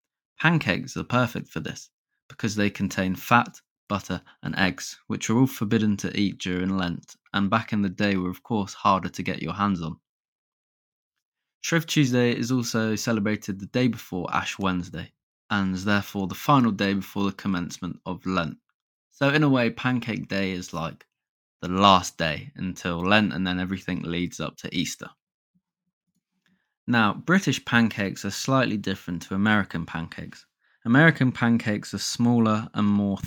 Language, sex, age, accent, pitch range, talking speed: English, male, 20-39, British, 95-120 Hz, 160 wpm